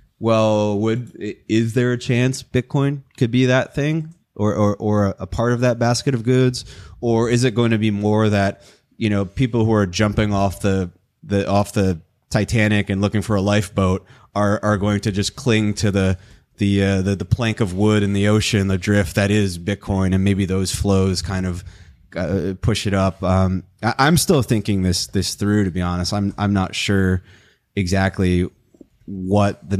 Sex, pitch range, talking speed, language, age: male, 95-110 Hz, 190 wpm, English, 20-39